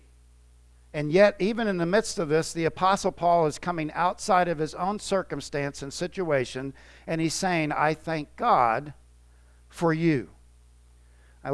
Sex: male